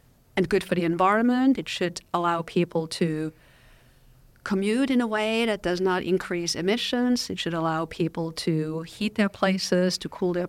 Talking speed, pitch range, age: 165 wpm, 165-210 Hz, 50-69